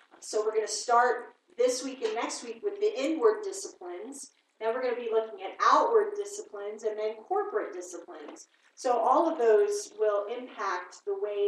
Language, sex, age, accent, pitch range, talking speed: English, female, 40-59, American, 215-330 Hz, 185 wpm